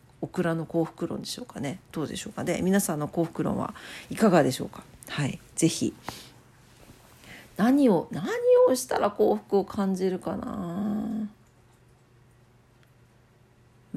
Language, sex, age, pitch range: Japanese, female, 50-69, 125-200 Hz